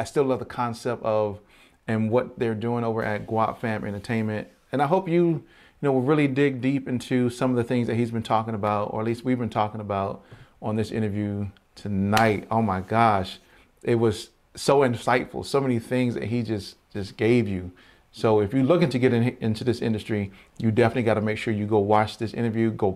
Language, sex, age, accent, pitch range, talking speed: English, male, 40-59, American, 110-125 Hz, 220 wpm